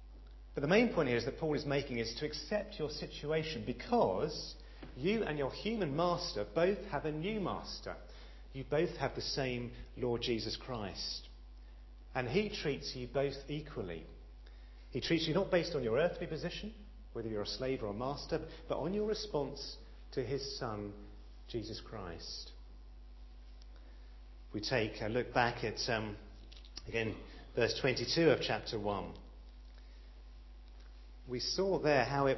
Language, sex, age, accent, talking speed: English, male, 40-59, British, 155 wpm